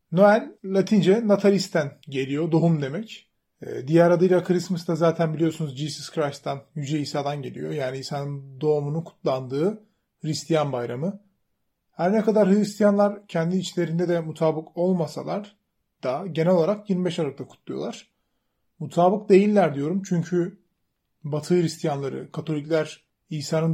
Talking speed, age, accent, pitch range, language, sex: 115 wpm, 30-49, native, 150-190 Hz, Turkish, male